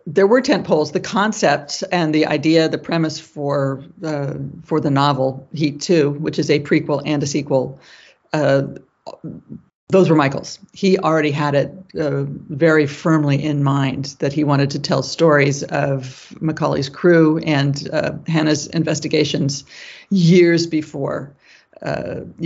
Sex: female